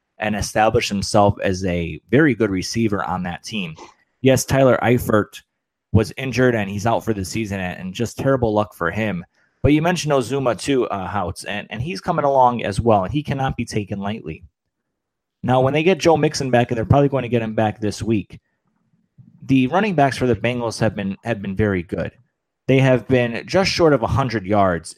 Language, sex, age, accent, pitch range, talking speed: English, male, 30-49, American, 100-130 Hz, 205 wpm